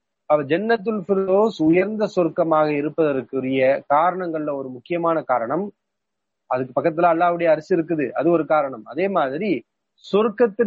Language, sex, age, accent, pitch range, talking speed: English, male, 30-49, Indian, 150-195 Hz, 110 wpm